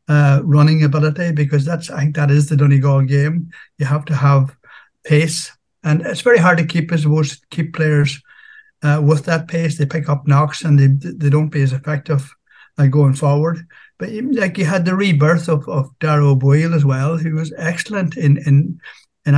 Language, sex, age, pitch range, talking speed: English, male, 60-79, 145-165 Hz, 195 wpm